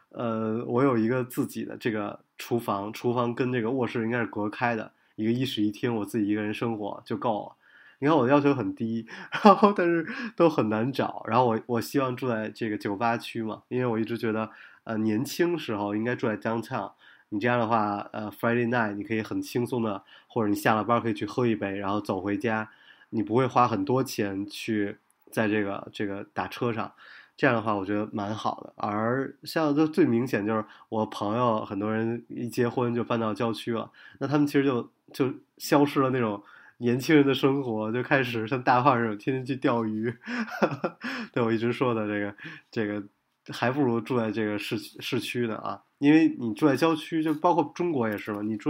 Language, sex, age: Chinese, male, 20-39